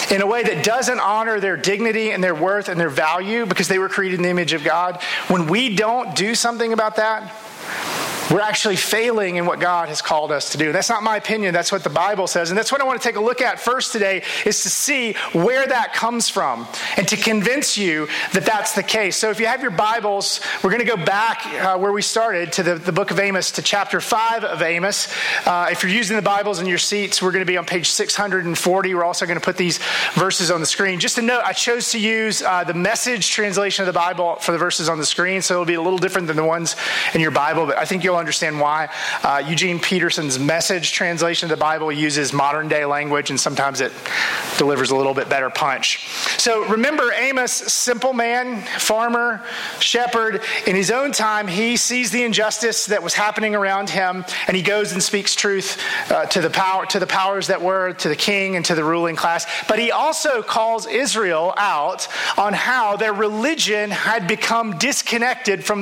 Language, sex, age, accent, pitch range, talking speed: English, male, 40-59, American, 175-220 Hz, 225 wpm